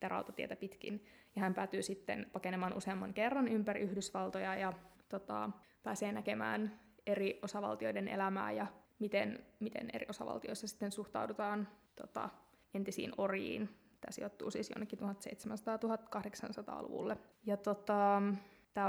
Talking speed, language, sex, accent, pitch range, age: 115 wpm, Finnish, female, native, 195-230 Hz, 20-39